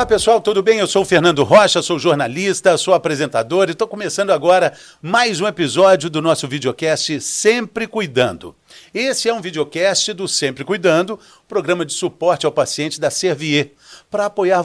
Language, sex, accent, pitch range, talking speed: Portuguese, male, Brazilian, 155-205 Hz, 170 wpm